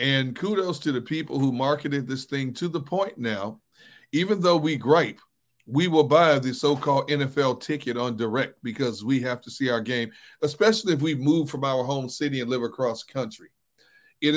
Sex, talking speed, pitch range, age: male, 190 wpm, 130-160 Hz, 40-59